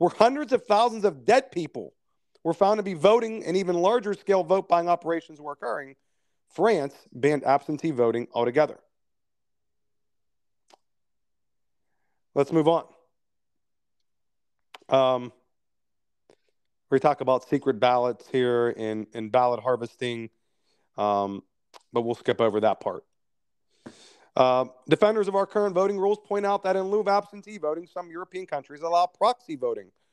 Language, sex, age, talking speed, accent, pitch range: English, male, 40-59, 135 wpm, American, 120-180 Hz